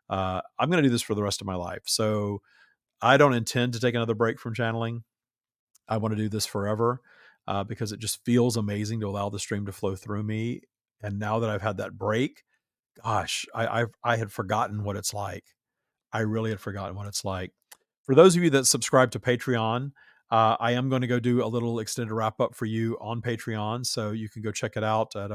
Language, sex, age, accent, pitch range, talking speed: English, male, 40-59, American, 105-120 Hz, 230 wpm